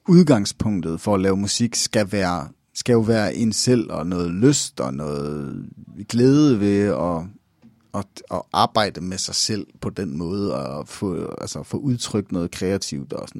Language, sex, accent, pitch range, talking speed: Danish, male, native, 105-160 Hz, 170 wpm